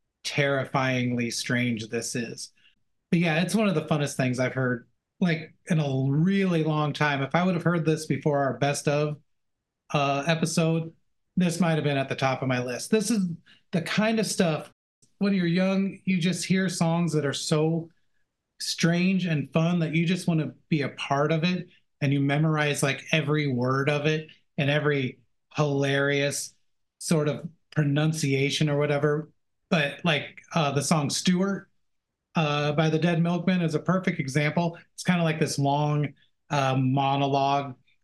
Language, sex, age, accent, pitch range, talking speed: English, male, 30-49, American, 135-170 Hz, 175 wpm